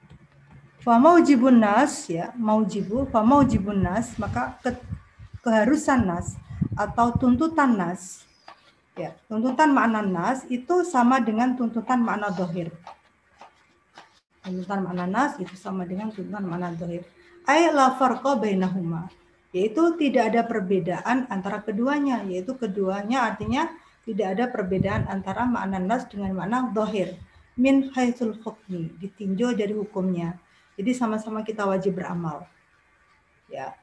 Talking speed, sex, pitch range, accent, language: 110 wpm, female, 190-255 Hz, native, Indonesian